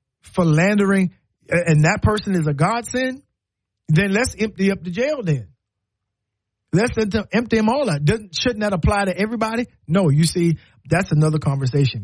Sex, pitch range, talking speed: male, 130-190 Hz, 155 wpm